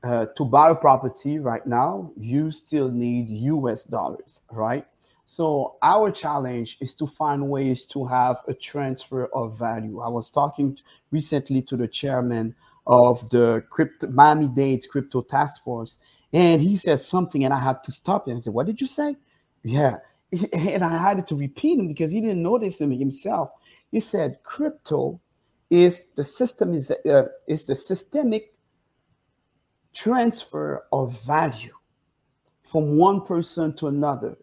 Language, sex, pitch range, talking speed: English, male, 130-175 Hz, 155 wpm